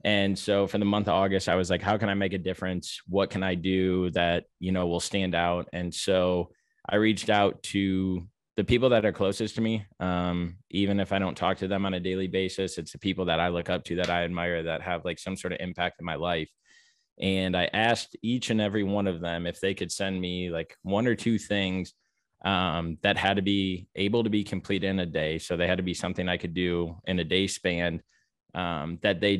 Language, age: English, 20-39